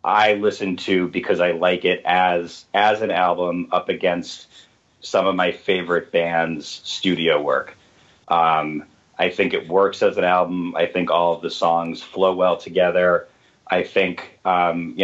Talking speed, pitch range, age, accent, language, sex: 165 wpm, 90-100 Hz, 30-49, American, English, male